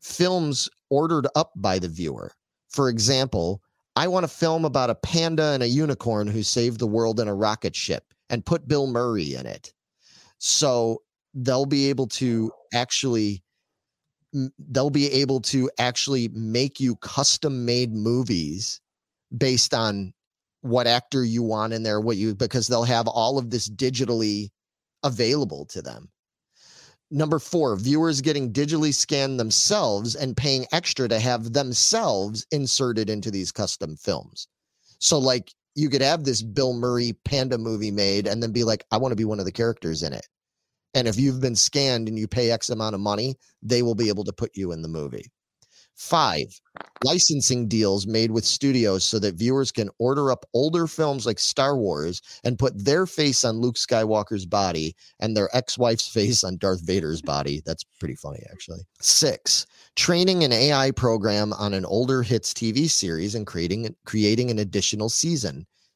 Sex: male